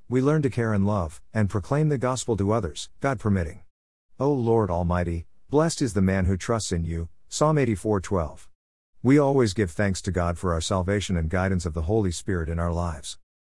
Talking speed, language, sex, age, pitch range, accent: 210 wpm, English, male, 50-69, 85-115 Hz, American